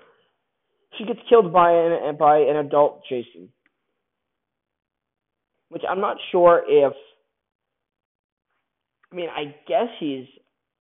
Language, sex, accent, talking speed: English, male, American, 105 wpm